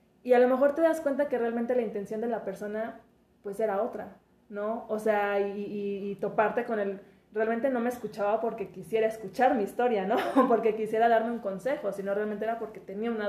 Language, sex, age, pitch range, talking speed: Spanish, female, 20-39, 195-225 Hz, 215 wpm